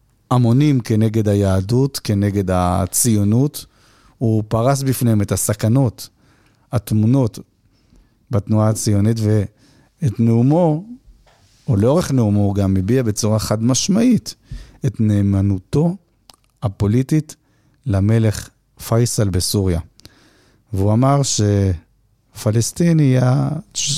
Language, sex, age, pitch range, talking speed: Hebrew, male, 50-69, 100-130 Hz, 85 wpm